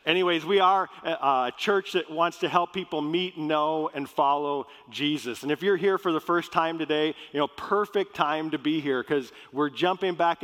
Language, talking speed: English, 200 wpm